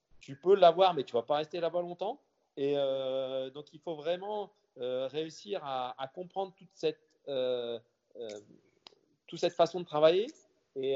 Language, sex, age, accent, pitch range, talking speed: French, male, 40-59, French, 130-170 Hz, 175 wpm